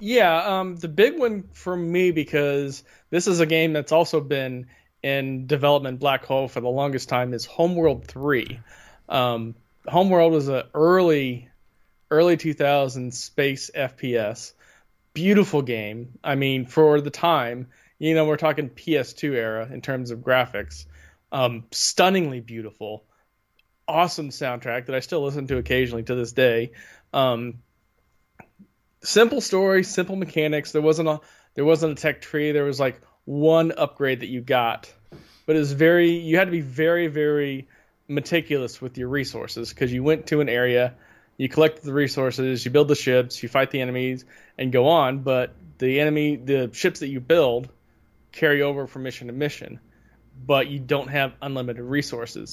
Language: English